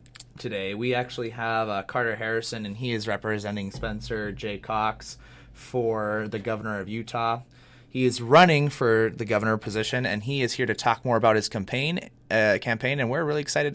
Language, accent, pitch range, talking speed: English, American, 110-130 Hz, 185 wpm